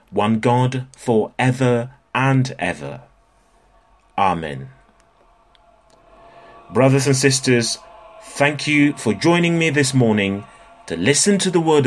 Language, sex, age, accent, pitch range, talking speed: English, male, 30-49, British, 110-145 Hz, 110 wpm